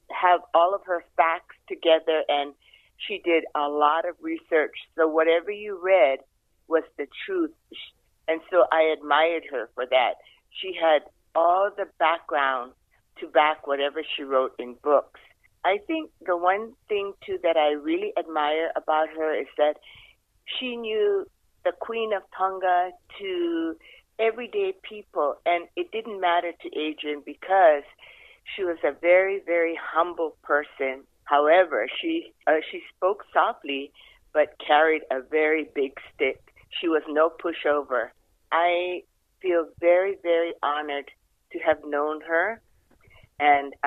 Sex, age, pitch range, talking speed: female, 50-69, 150-200 Hz, 140 wpm